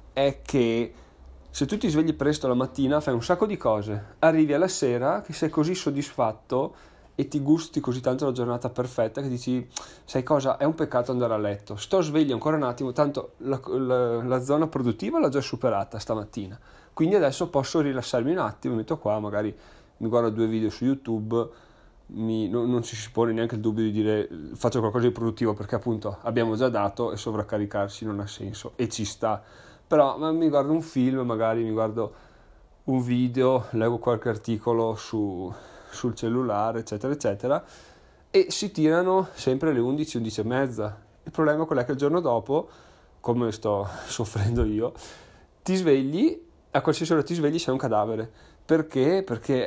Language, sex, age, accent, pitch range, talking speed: Italian, male, 30-49, native, 110-145 Hz, 175 wpm